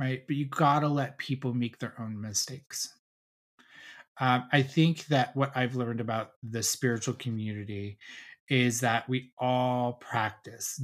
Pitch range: 115-140 Hz